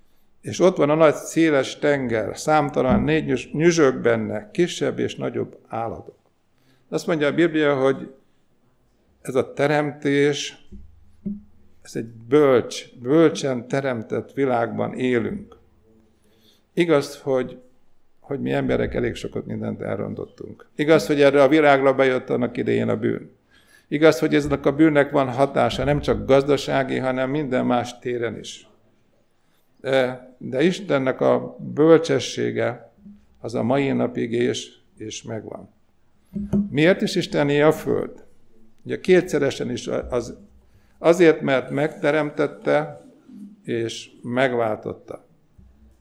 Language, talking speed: Hungarian, 120 wpm